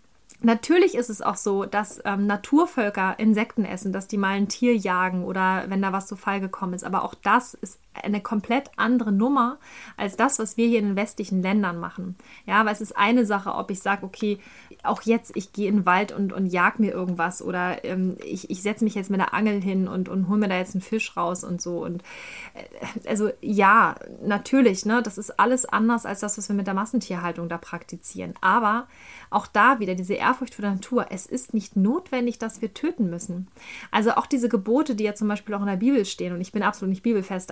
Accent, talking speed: German, 225 wpm